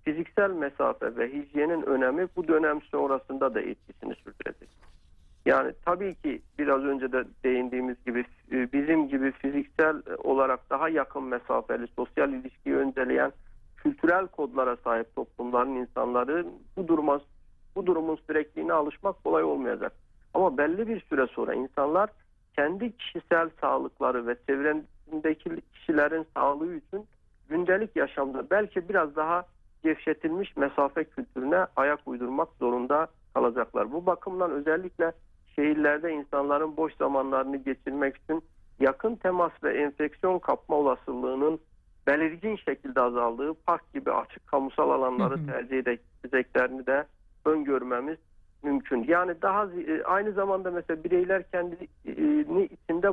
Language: Turkish